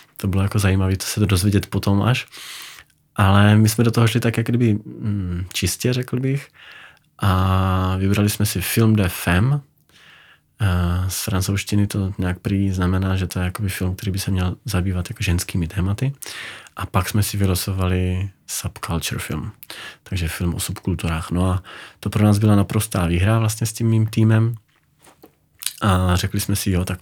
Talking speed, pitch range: 175 wpm, 90-105 Hz